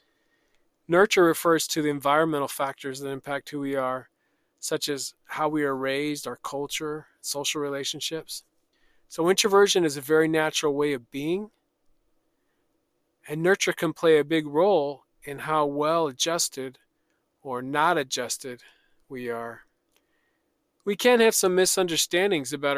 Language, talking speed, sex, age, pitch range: English, 135 wpm, male, 40-59, 145-175 Hz